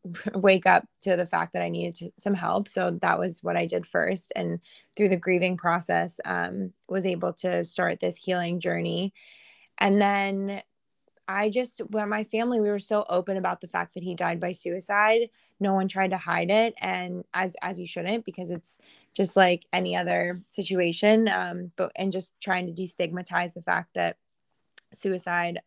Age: 20-39